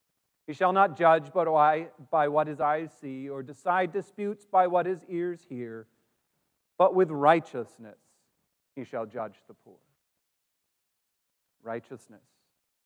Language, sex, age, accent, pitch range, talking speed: English, male, 40-59, American, 150-215 Hz, 120 wpm